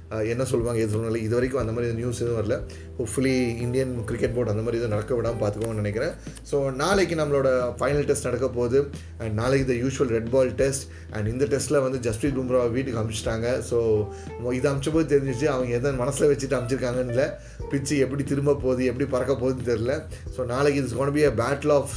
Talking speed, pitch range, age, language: 185 wpm, 120-140 Hz, 30-49, Tamil